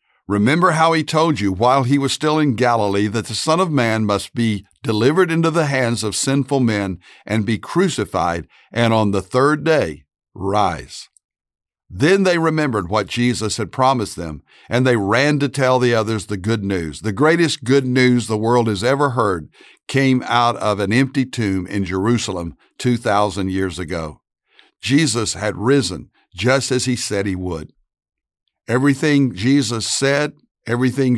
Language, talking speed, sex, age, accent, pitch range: English, 165 wpm, male, 60-79, American, 105-140 Hz